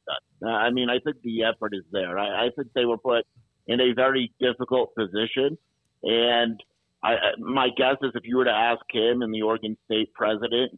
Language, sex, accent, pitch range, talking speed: English, male, American, 105-120 Hz, 205 wpm